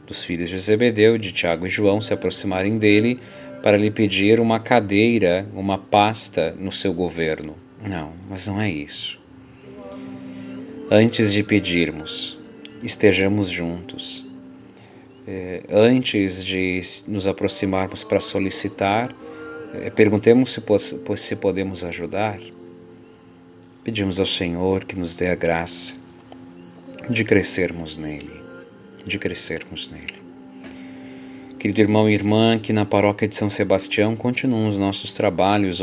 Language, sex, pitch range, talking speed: Portuguese, male, 90-105 Hz, 115 wpm